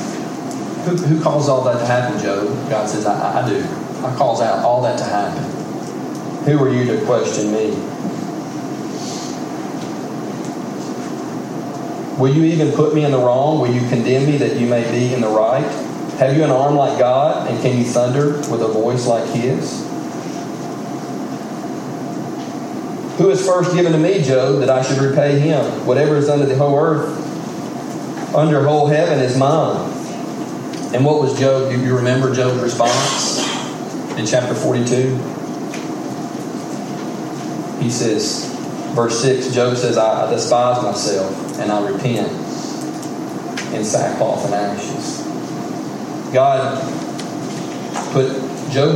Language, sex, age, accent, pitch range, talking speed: English, male, 40-59, American, 120-145 Hz, 140 wpm